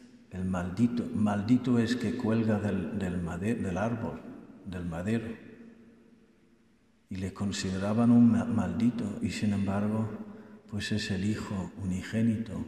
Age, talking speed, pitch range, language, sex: 50-69, 125 wpm, 105-125 Hz, Spanish, male